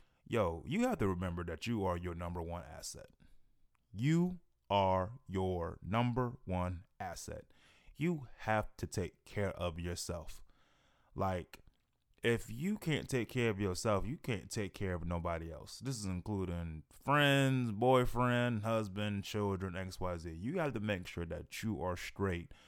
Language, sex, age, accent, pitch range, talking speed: English, male, 20-39, American, 90-115 Hz, 150 wpm